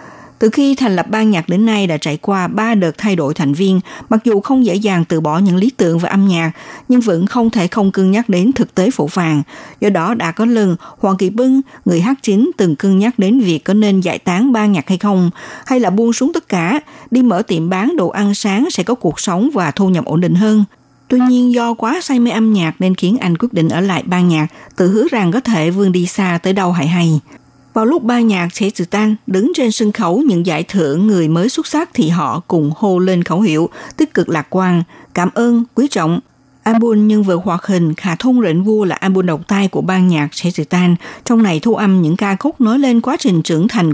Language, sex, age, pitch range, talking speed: Vietnamese, female, 60-79, 175-235 Hz, 245 wpm